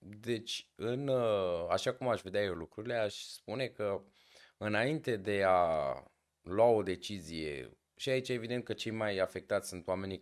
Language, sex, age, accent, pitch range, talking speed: Romanian, male, 20-39, native, 90-115 Hz, 145 wpm